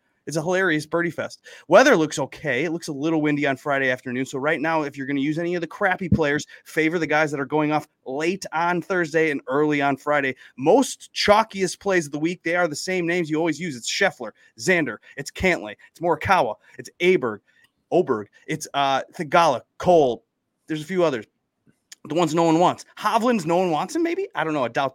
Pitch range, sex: 135-175 Hz, male